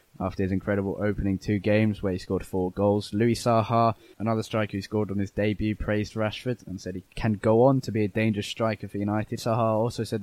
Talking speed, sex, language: 225 wpm, male, English